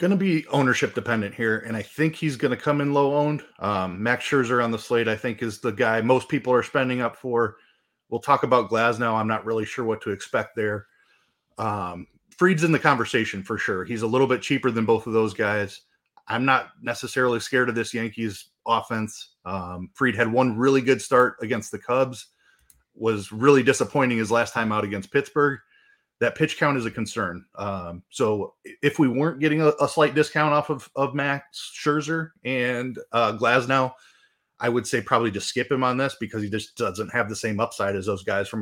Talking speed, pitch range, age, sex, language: 210 wpm, 110-140 Hz, 30-49, male, English